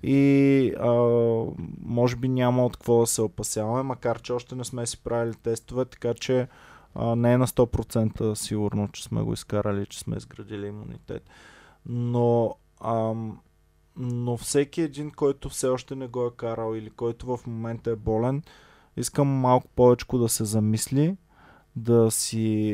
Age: 20-39